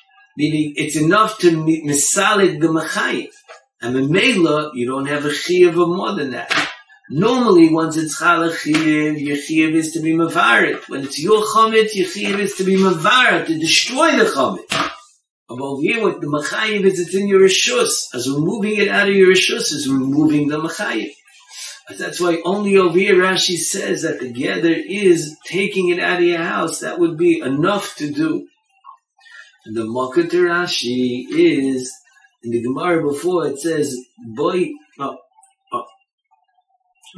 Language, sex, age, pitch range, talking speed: English, male, 50-69, 145-220 Hz, 160 wpm